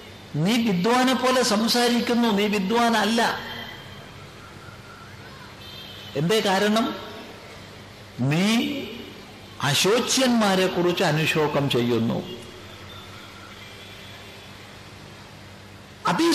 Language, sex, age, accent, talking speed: Malayalam, male, 60-79, native, 55 wpm